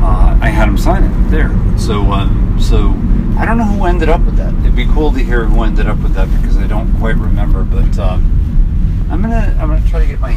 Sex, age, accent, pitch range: male, 40-59, American, 75-105 Hz